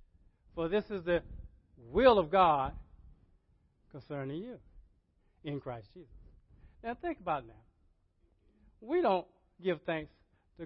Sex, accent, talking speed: male, American, 125 wpm